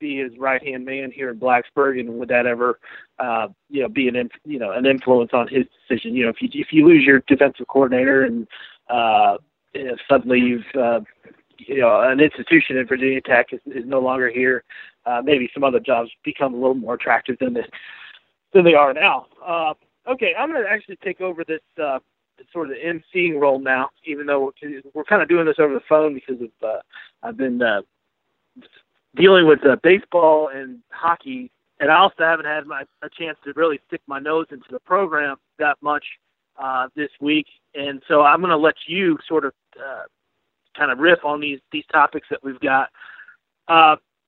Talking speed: 200 wpm